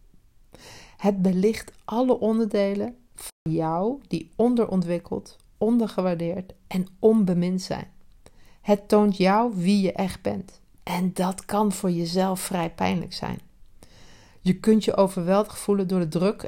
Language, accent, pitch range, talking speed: Dutch, Dutch, 170-210 Hz, 125 wpm